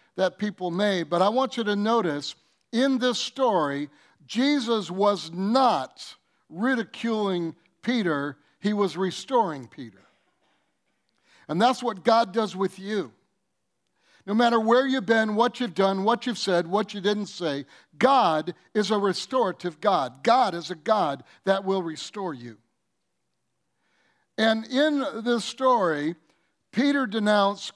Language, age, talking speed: English, 60-79, 135 wpm